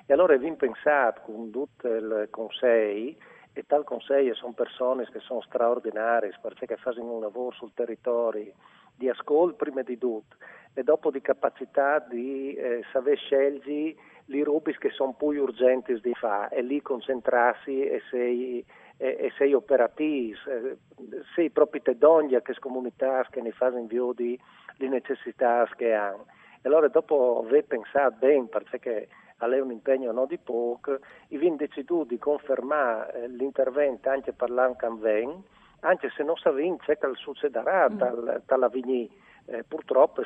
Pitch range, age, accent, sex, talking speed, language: 120-160 Hz, 40-59, native, male, 150 wpm, Italian